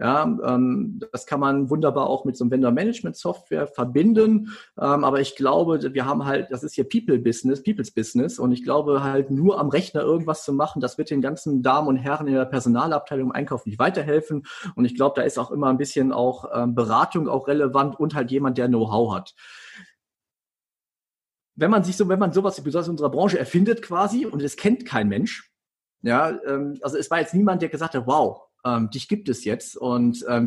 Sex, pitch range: male, 130-165 Hz